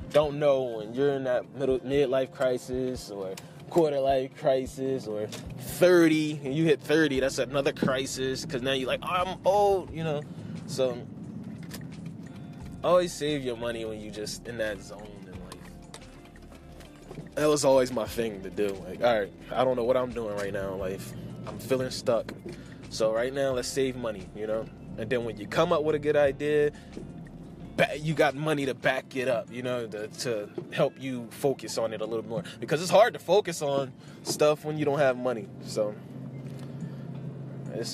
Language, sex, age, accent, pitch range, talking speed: English, male, 20-39, American, 115-155 Hz, 180 wpm